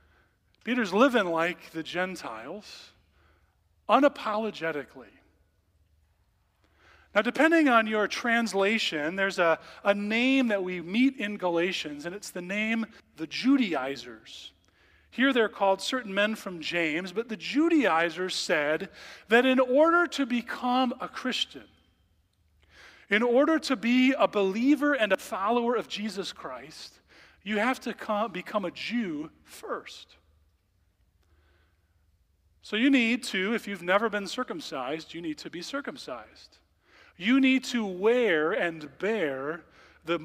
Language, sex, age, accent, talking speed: English, male, 40-59, American, 125 wpm